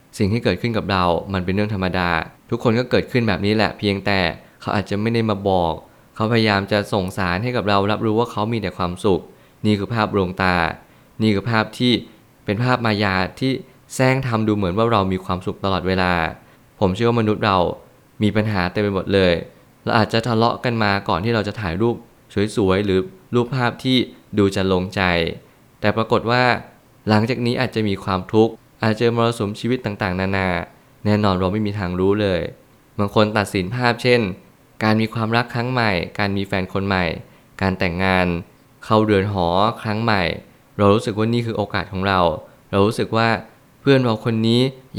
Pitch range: 95-115 Hz